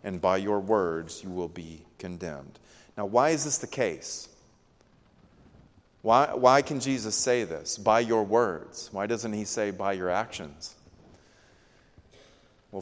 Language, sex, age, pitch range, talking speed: English, male, 30-49, 100-125 Hz, 145 wpm